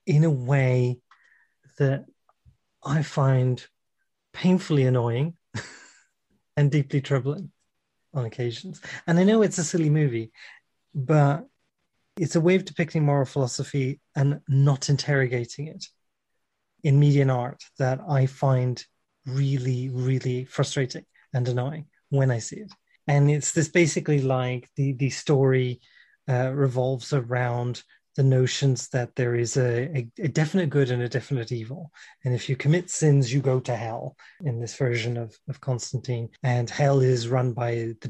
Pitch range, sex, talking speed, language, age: 125-150 Hz, male, 150 wpm, English, 30-49